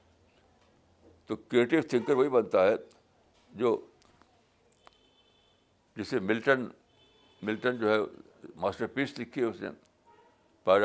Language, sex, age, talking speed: Urdu, male, 60-79, 105 wpm